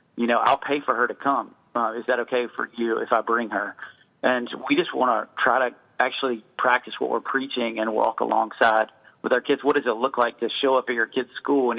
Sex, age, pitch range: male, 40-59, 115-130 Hz